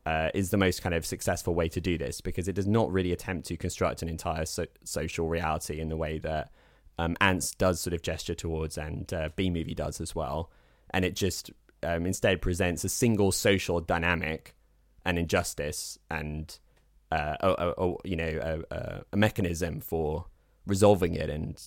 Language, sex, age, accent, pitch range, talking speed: English, male, 20-39, British, 80-95 Hz, 175 wpm